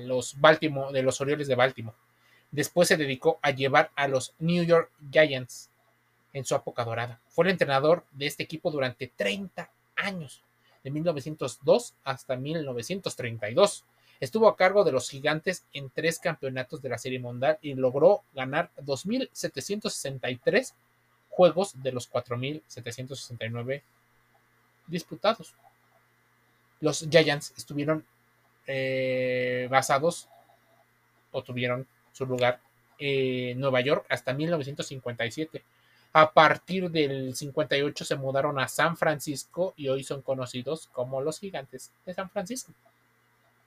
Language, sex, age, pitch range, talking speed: Spanish, male, 30-49, 125-155 Hz, 120 wpm